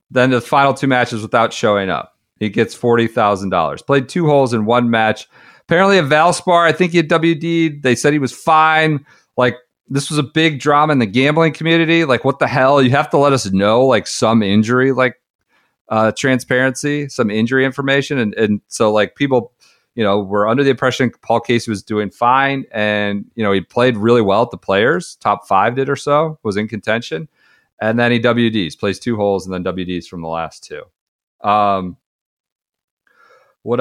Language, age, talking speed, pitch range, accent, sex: English, 40-59, 195 wpm, 105-140 Hz, American, male